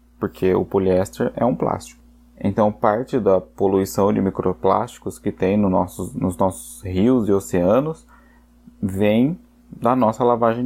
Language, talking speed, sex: Portuguese, 135 wpm, male